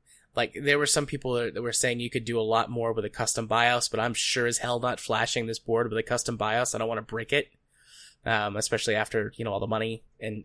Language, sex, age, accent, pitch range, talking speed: English, male, 20-39, American, 115-130 Hz, 265 wpm